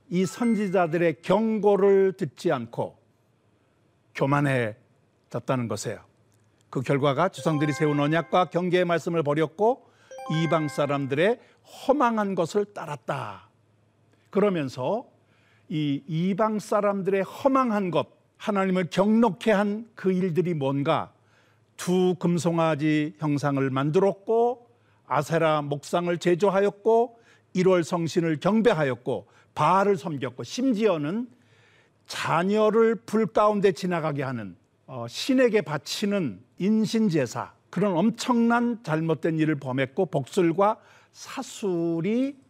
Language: Korean